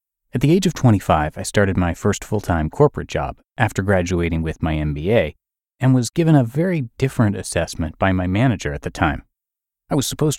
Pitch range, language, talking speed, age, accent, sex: 90-120 Hz, English, 190 wpm, 30-49, American, male